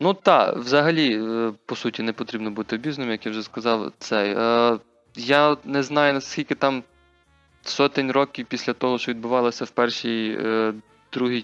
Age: 20-39